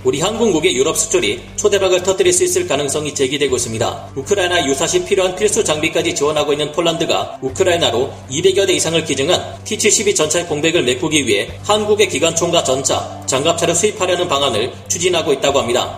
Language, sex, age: Korean, male, 40-59